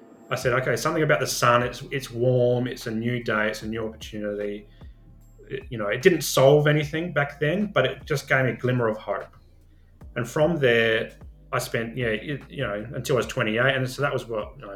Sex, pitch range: male, 105-125 Hz